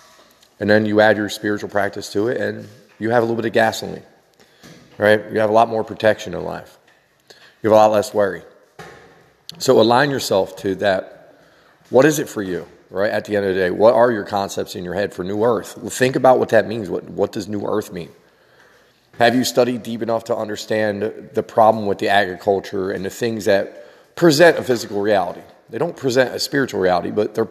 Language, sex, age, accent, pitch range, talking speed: English, male, 40-59, American, 100-120 Hz, 215 wpm